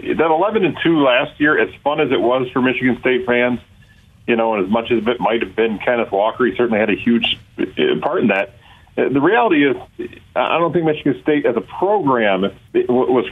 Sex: male